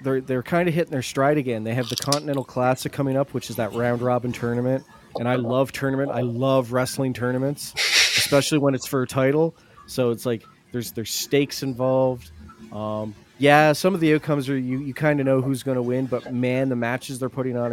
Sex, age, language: male, 30-49, English